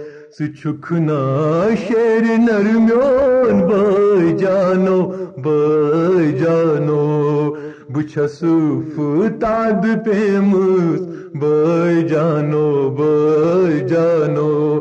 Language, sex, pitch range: Urdu, male, 155-225 Hz